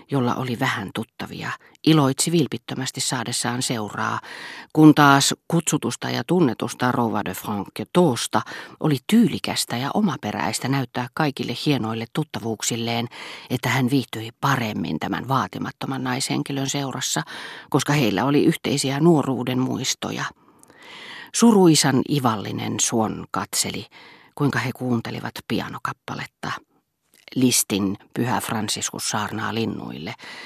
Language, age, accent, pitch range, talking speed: Finnish, 40-59, native, 115-145 Hz, 100 wpm